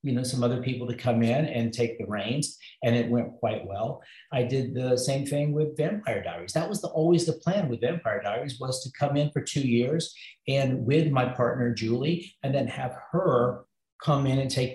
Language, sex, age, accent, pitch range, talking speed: English, male, 50-69, American, 125-160 Hz, 220 wpm